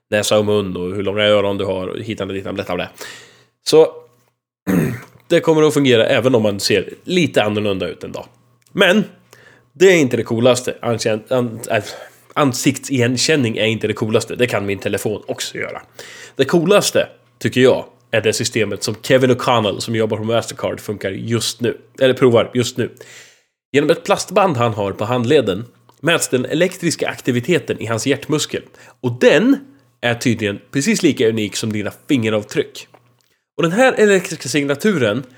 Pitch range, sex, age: 110-140 Hz, male, 20-39